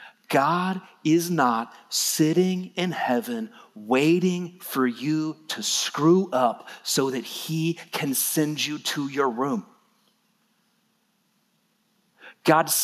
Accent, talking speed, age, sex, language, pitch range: American, 105 wpm, 40-59, male, English, 180-230 Hz